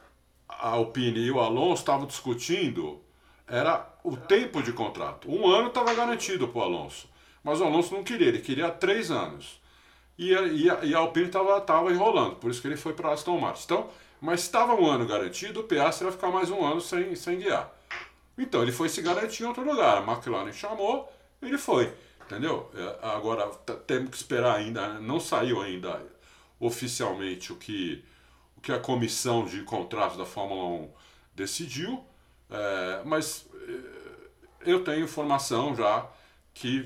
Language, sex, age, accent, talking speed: Portuguese, male, 50-69, Brazilian, 165 wpm